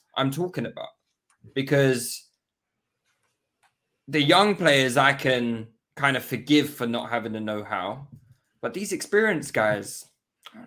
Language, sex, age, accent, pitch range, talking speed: English, male, 10-29, British, 130-175 Hz, 135 wpm